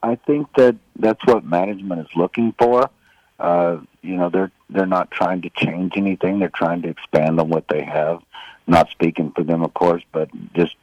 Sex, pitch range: male, 75-90 Hz